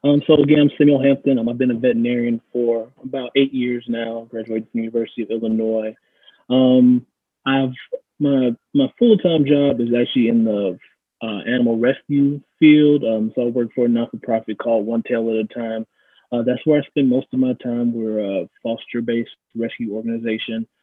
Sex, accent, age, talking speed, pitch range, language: male, American, 20-39, 180 wpm, 115-125 Hz, English